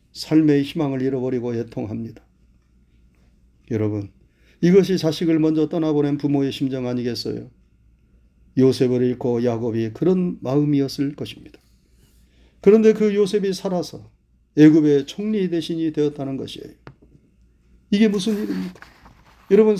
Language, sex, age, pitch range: Korean, male, 40-59, 115-175 Hz